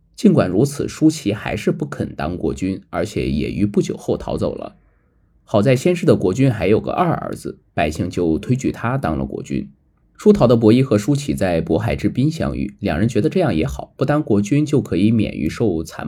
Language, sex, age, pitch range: Chinese, male, 20-39, 100-140 Hz